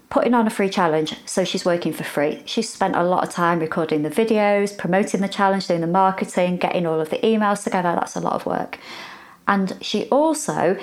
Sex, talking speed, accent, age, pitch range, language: female, 215 wpm, British, 30-49, 170-210 Hz, English